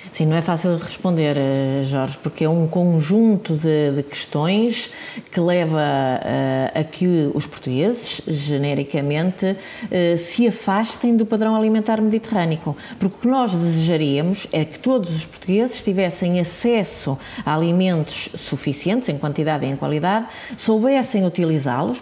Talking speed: 135 wpm